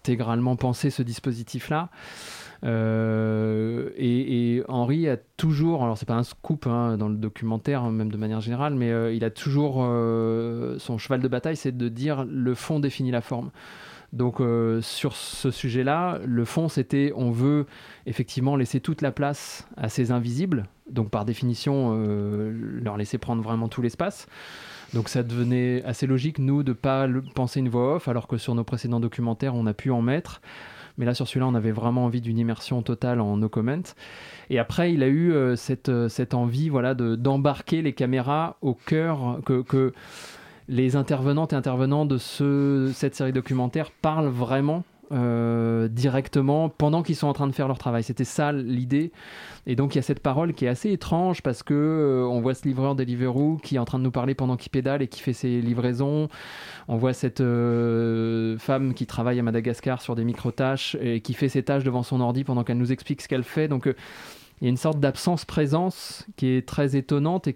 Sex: male